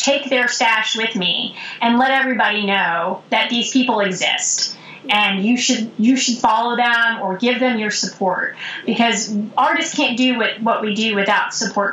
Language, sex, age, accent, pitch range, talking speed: English, female, 30-49, American, 210-275 Hz, 170 wpm